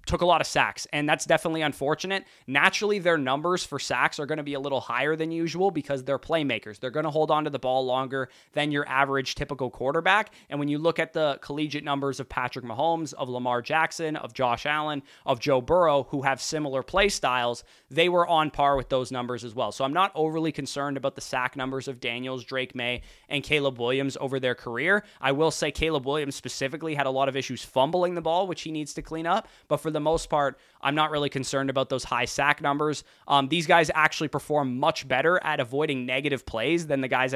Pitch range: 135-160 Hz